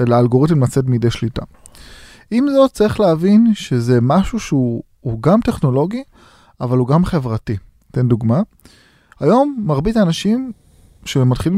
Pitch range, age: 120-170 Hz, 30-49